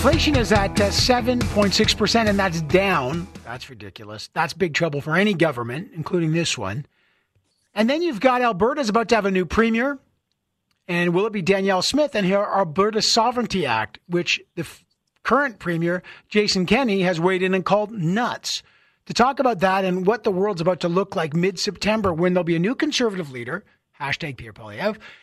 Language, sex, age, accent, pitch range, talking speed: English, male, 40-59, American, 165-215 Hz, 180 wpm